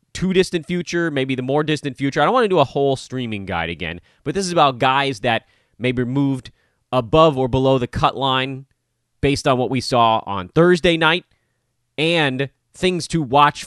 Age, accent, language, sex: 30-49, American, English, male